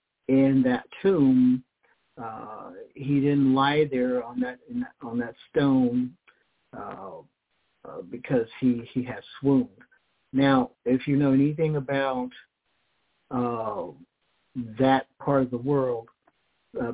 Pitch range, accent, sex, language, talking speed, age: 120-135 Hz, American, male, English, 115 wpm, 50-69